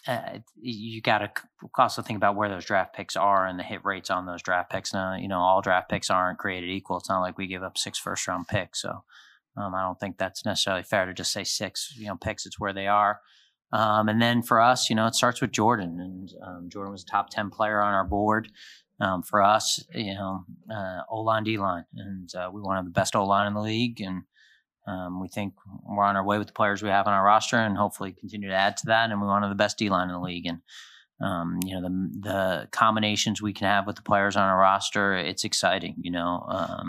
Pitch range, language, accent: 95-105 Hz, English, American